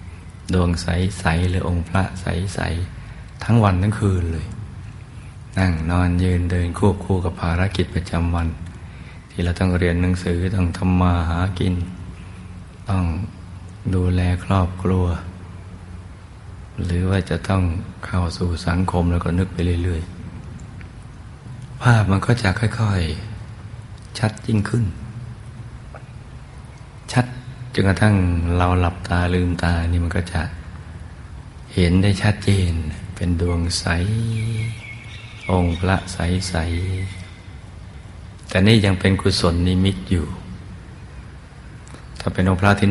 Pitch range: 85-100 Hz